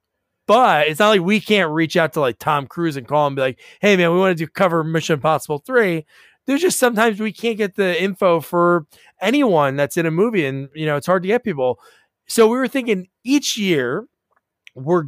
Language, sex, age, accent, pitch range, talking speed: English, male, 20-39, American, 145-195 Hz, 225 wpm